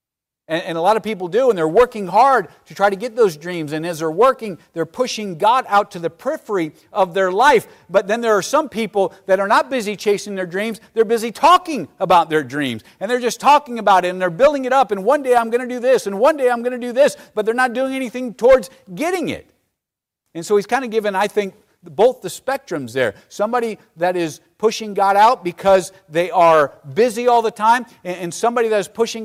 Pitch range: 175-230 Hz